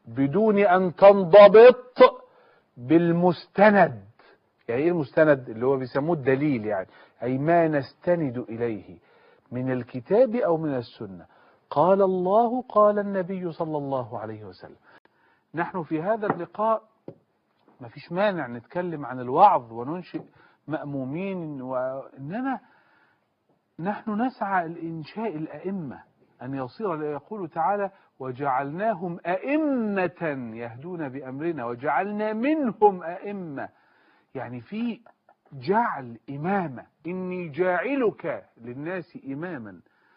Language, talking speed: Arabic, 100 wpm